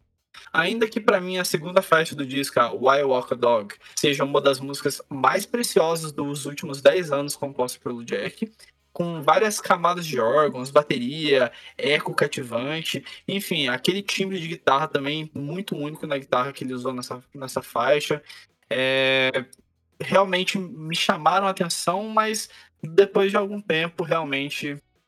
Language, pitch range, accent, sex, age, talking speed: Portuguese, 140-190 Hz, Brazilian, male, 20-39, 155 wpm